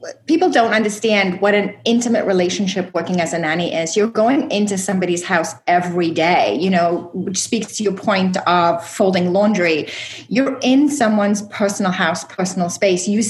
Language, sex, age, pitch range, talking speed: English, female, 30-49, 180-215 Hz, 165 wpm